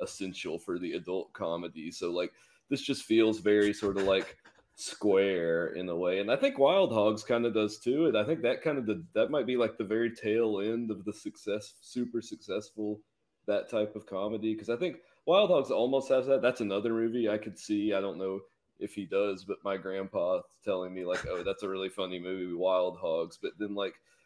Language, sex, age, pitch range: English, male, 30-49, 90-110 Hz